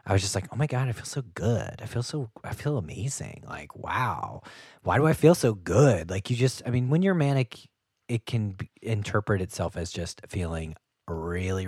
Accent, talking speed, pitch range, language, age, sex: American, 210 wpm, 95-130 Hz, English, 30-49, male